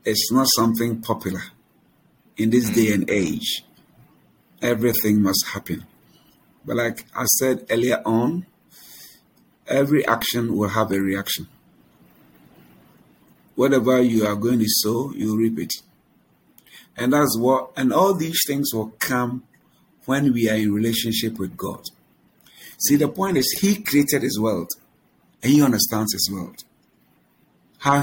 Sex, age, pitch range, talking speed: male, 50-69, 110-135 Hz, 130 wpm